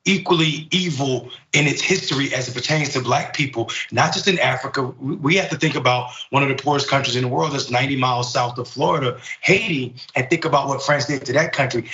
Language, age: English, 30-49